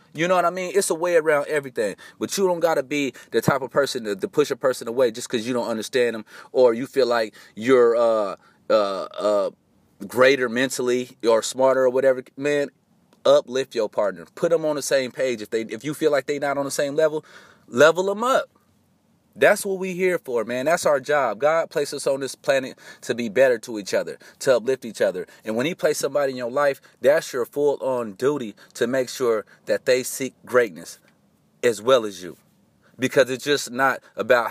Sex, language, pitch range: male, English, 125-180 Hz